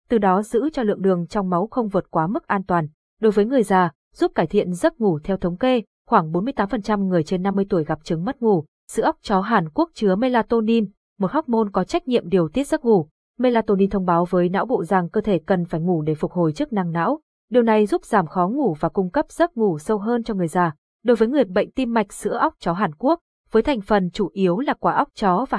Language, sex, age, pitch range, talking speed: Vietnamese, female, 20-39, 180-240 Hz, 250 wpm